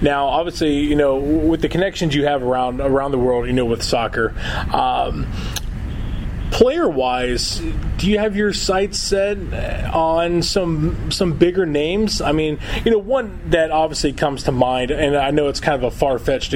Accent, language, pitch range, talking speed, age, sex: American, English, 125-165 Hz, 175 wpm, 20-39, male